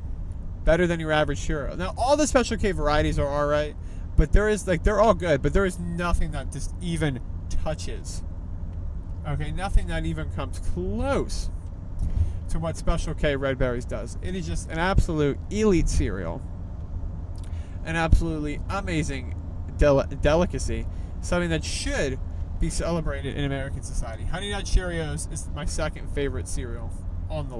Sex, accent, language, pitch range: male, American, English, 80-90 Hz